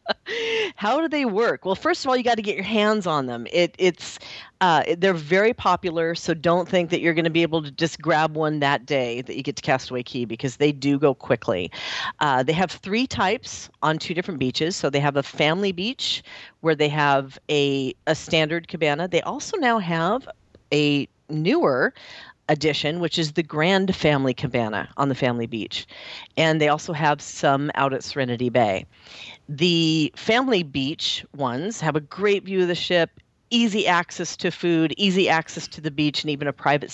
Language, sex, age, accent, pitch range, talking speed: English, female, 40-59, American, 140-175 Hz, 195 wpm